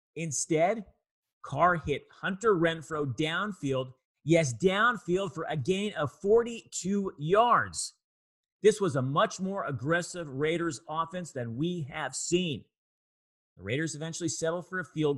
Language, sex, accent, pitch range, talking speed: English, male, American, 130-170 Hz, 130 wpm